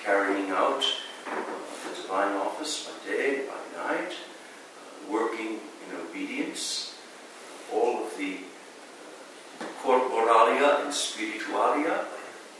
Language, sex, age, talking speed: English, male, 60-79, 90 wpm